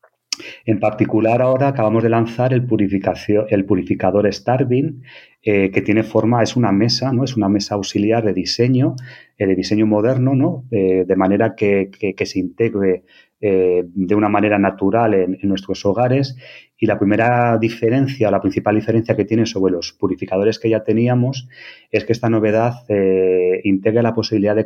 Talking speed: 175 wpm